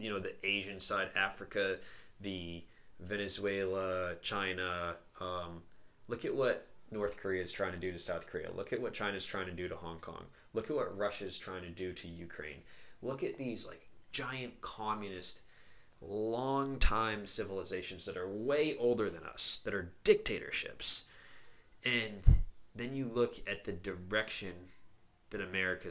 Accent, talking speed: American, 160 wpm